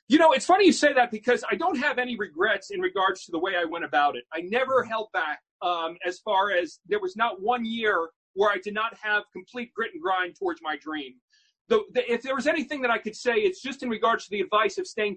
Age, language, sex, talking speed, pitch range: 40-59, English, male, 255 wpm, 200-260 Hz